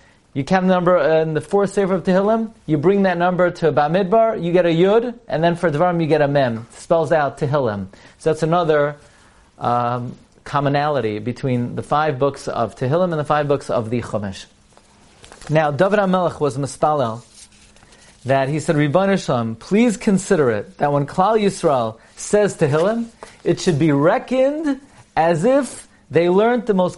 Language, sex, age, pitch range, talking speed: English, male, 40-59, 130-180 Hz, 170 wpm